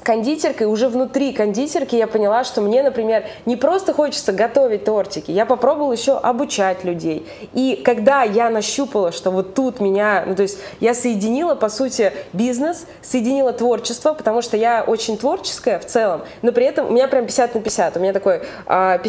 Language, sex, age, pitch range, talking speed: Russian, female, 20-39, 210-255 Hz, 175 wpm